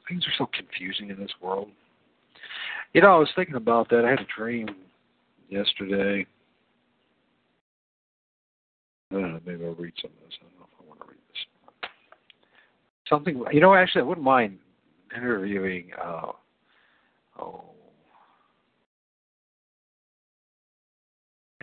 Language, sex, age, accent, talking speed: English, male, 60-79, American, 130 wpm